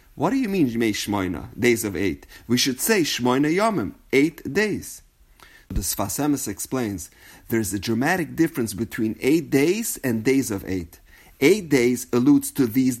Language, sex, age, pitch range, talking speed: English, male, 30-49, 105-160 Hz, 160 wpm